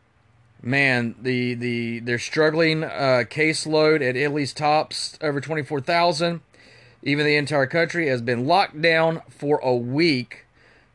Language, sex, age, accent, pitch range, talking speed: English, male, 30-49, American, 120-145 Hz, 125 wpm